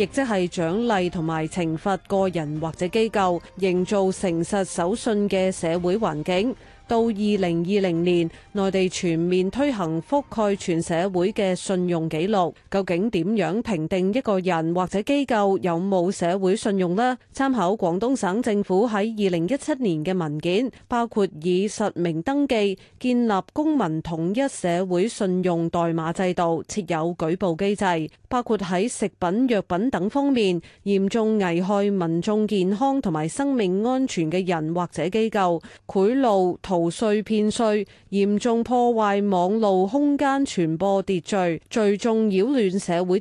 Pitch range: 175-220 Hz